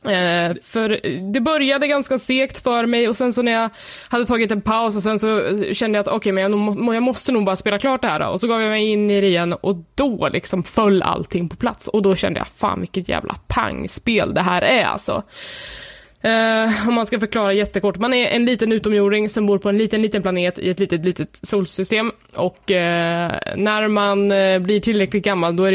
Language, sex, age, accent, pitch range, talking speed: Swedish, female, 20-39, native, 190-225 Hz, 215 wpm